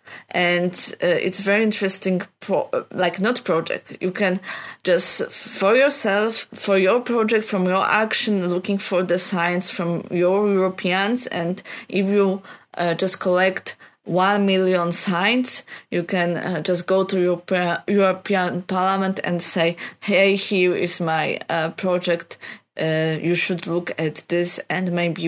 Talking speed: 140 wpm